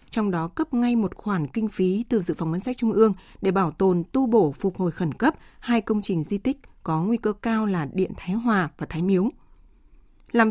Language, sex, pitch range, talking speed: Vietnamese, female, 185-230 Hz, 235 wpm